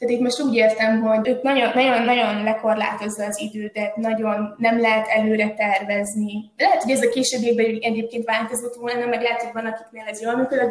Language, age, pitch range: Hungarian, 20-39, 220-255 Hz